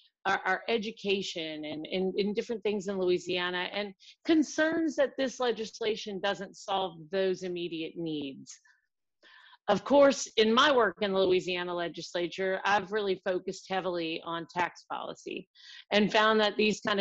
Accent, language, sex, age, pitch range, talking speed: American, English, female, 40-59, 180-225 Hz, 145 wpm